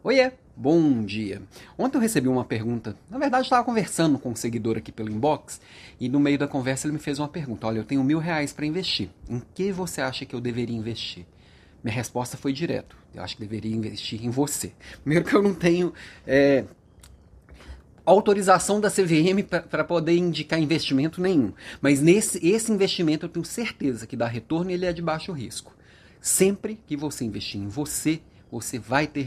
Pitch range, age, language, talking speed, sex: 115-180 Hz, 30-49, Portuguese, 190 wpm, male